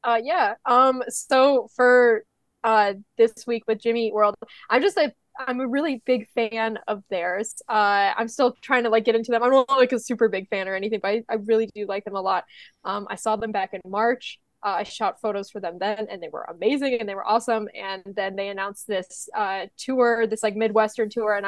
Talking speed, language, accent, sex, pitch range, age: 230 wpm, English, American, female, 205-235 Hz, 10-29